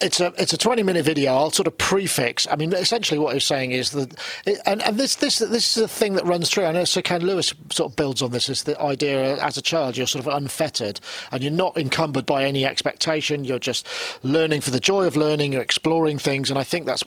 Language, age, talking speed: English, 40-59, 255 wpm